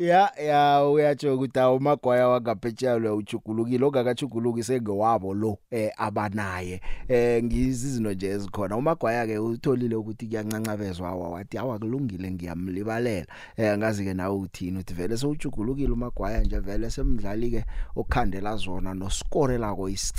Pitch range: 95-120 Hz